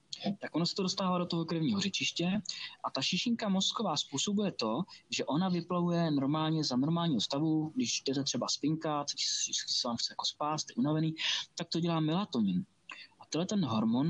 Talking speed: 180 wpm